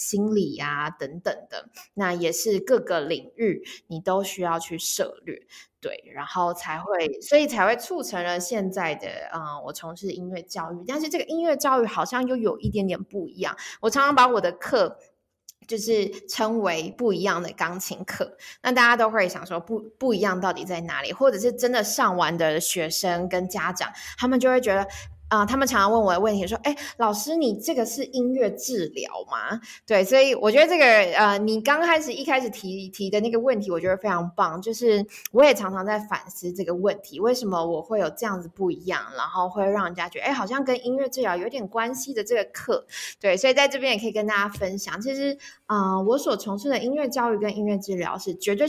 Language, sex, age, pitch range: Chinese, female, 20-39, 180-250 Hz